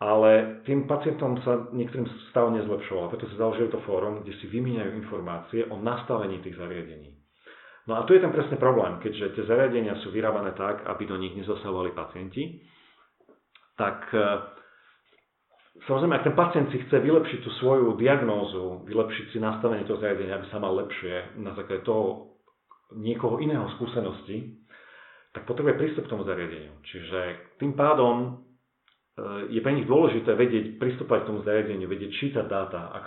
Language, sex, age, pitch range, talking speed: Slovak, male, 40-59, 100-120 Hz, 160 wpm